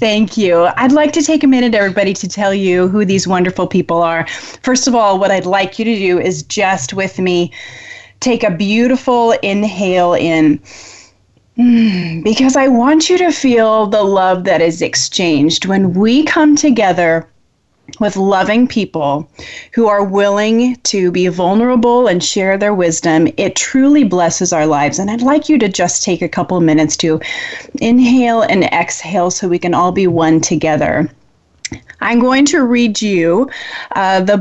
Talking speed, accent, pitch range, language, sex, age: 165 wpm, American, 180-235 Hz, English, female, 30-49